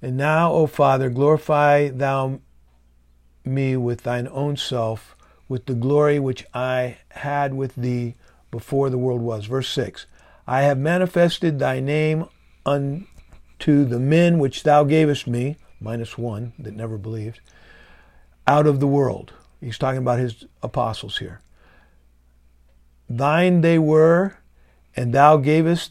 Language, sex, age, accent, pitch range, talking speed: English, male, 50-69, American, 105-145 Hz, 135 wpm